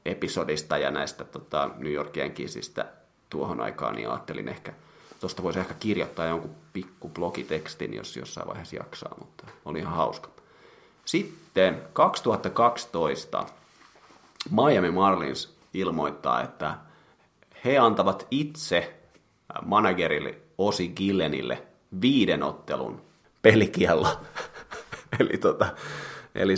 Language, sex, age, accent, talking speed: Finnish, male, 30-49, native, 100 wpm